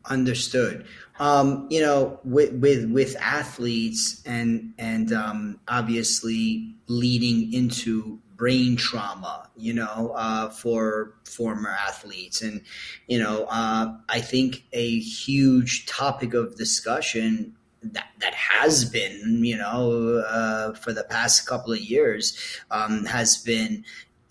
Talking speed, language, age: 120 wpm, English, 30-49